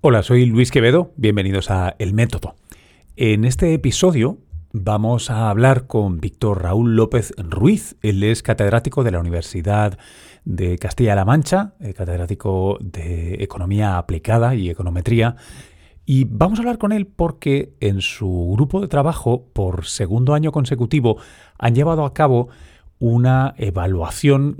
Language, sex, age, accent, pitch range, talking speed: Spanish, male, 40-59, Spanish, 95-135 Hz, 135 wpm